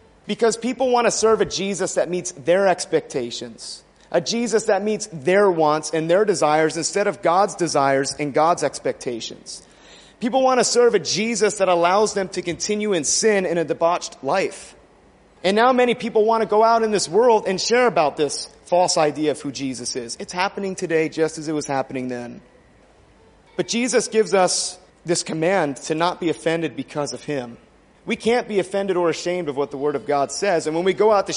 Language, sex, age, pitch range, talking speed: English, male, 30-49, 155-215 Hz, 205 wpm